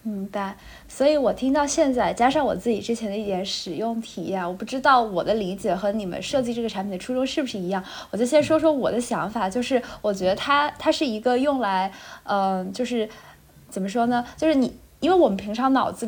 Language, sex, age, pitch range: Chinese, female, 20-39, 200-275 Hz